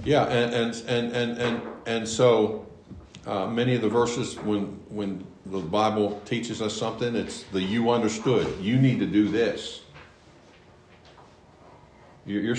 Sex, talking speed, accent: male, 145 wpm, American